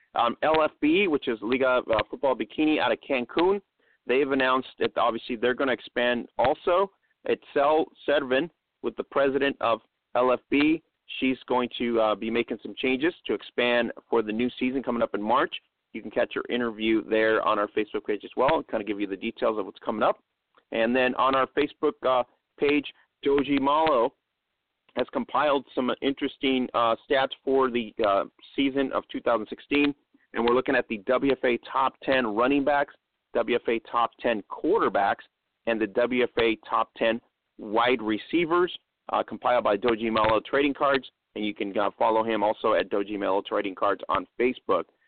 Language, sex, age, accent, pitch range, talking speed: English, male, 40-59, American, 115-140 Hz, 175 wpm